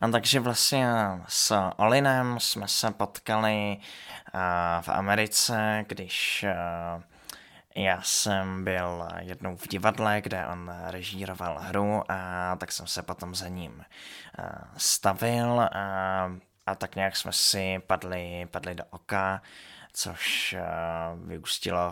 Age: 20-39